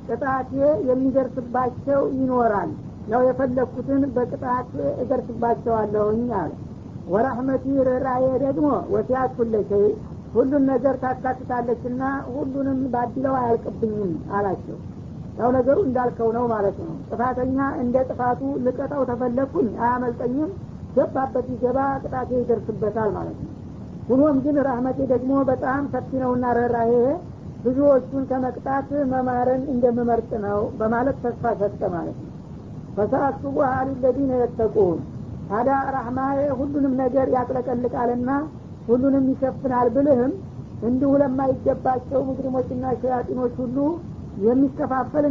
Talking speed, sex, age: 100 wpm, female, 60-79